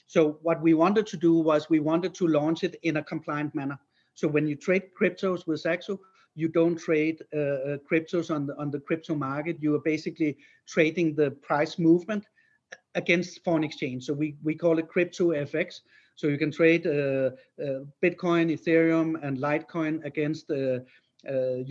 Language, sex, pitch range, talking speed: English, male, 150-175 Hz, 170 wpm